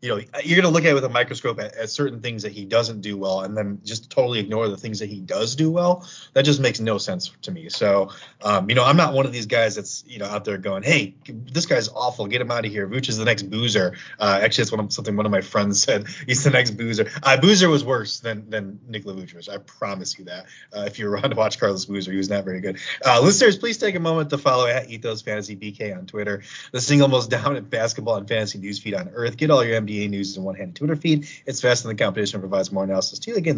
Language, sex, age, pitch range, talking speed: English, male, 30-49, 105-140 Hz, 275 wpm